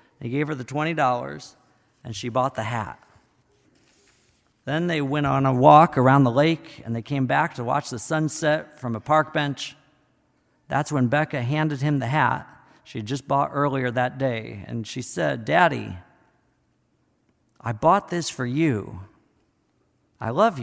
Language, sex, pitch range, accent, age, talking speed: English, male, 120-165 Hz, American, 50-69, 165 wpm